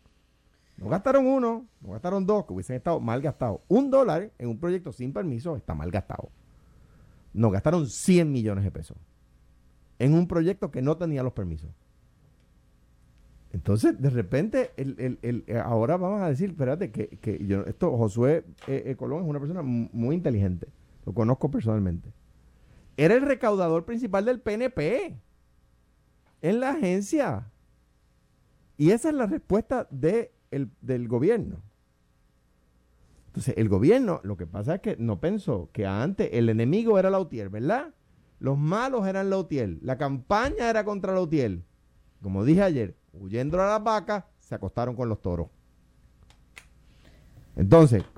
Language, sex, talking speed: Spanish, male, 150 wpm